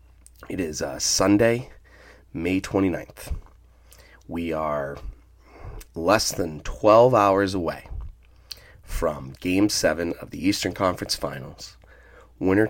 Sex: male